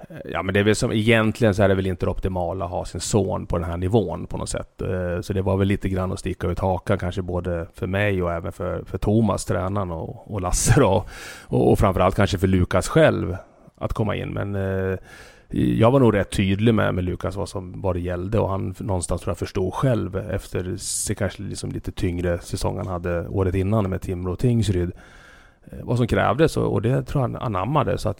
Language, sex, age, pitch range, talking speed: Swedish, male, 30-49, 90-105 Hz, 220 wpm